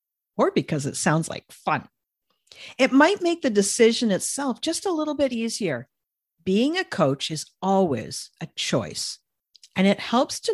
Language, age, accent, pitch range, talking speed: English, 50-69, American, 180-280 Hz, 160 wpm